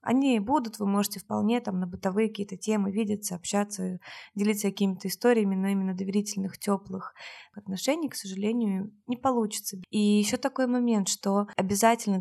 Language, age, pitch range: Russian, 20-39, 185-210 Hz